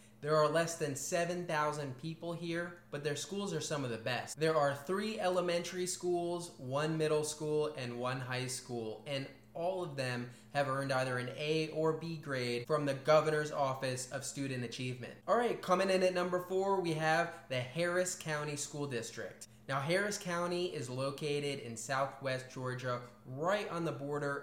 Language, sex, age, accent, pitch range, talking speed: English, male, 20-39, American, 130-170 Hz, 175 wpm